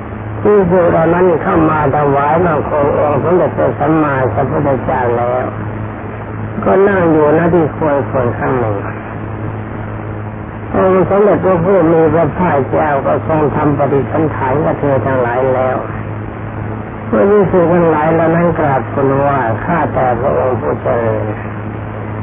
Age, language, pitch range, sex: 60-79, Thai, 110-165 Hz, male